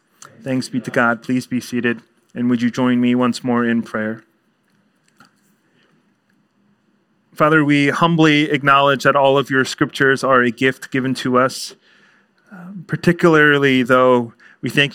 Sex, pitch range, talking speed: male, 125-145 Hz, 140 wpm